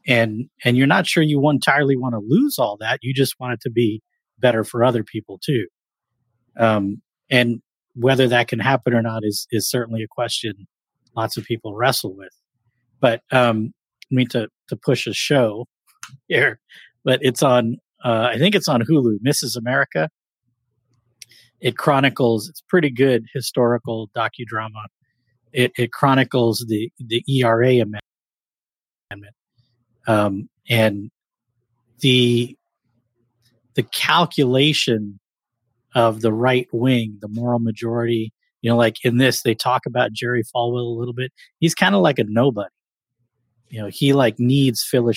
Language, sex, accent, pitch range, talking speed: English, male, American, 115-130 Hz, 150 wpm